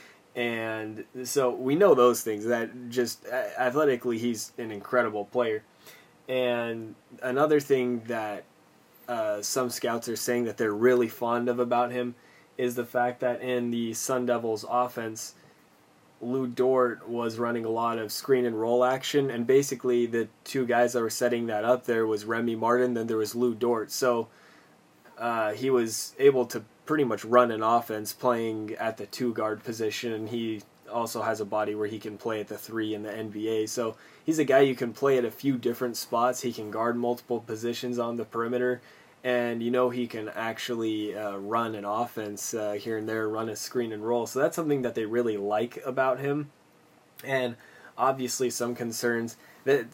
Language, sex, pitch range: English, male, 110-125 Hz